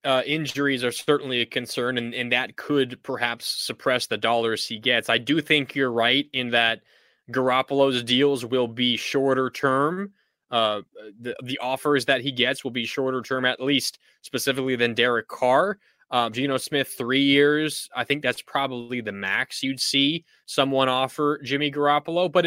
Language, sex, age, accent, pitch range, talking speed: English, male, 20-39, American, 130-160 Hz, 170 wpm